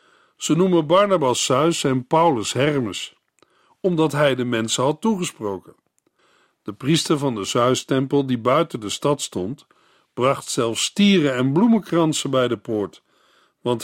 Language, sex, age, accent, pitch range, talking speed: Dutch, male, 50-69, Dutch, 120-165 Hz, 140 wpm